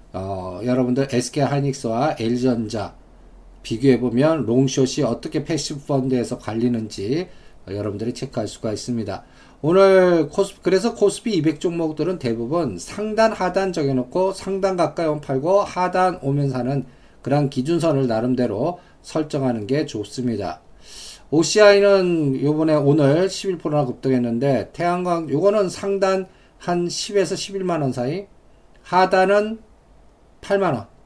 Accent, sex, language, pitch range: native, male, Korean, 125-175 Hz